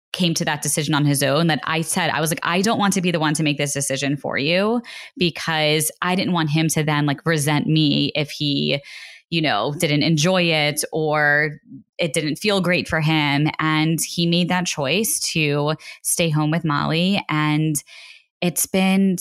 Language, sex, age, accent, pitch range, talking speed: English, female, 10-29, American, 150-180 Hz, 195 wpm